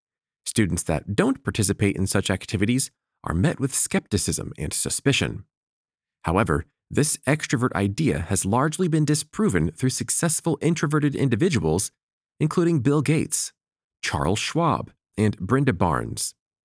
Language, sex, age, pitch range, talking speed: English, male, 40-59, 100-155 Hz, 120 wpm